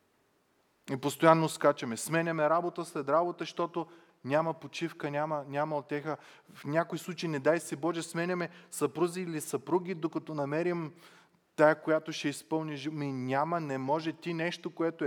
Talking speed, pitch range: 145 wpm, 130-165 Hz